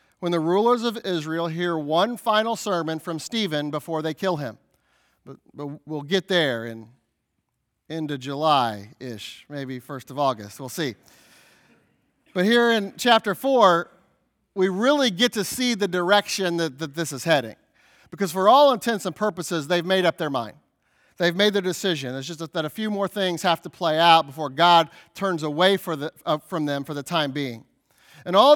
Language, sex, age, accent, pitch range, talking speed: English, male, 40-59, American, 165-225 Hz, 180 wpm